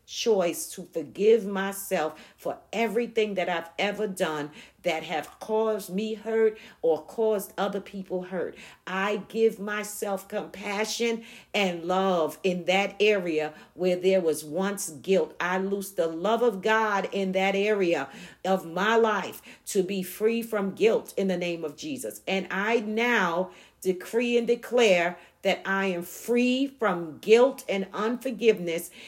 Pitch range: 190-235 Hz